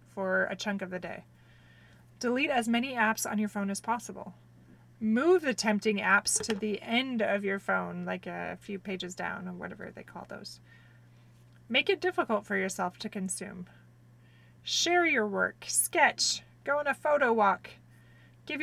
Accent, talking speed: American, 170 wpm